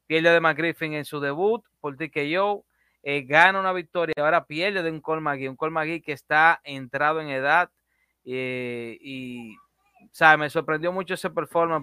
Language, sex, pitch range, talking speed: Spanish, male, 140-170 Hz, 160 wpm